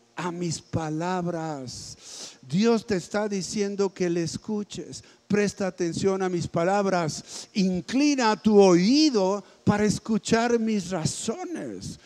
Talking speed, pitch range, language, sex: 110 wpm, 160-215 Hz, Spanish, male